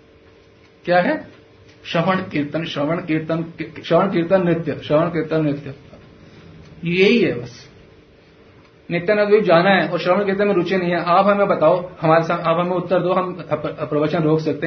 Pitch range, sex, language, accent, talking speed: 150-200 Hz, male, Hindi, native, 170 wpm